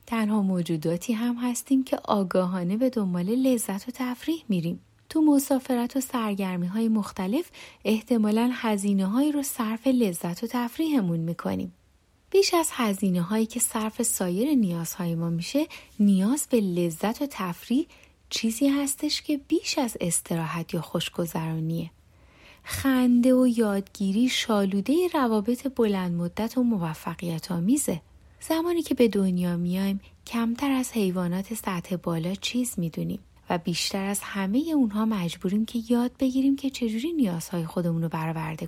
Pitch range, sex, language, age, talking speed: 175-250 Hz, female, Persian, 30-49, 135 wpm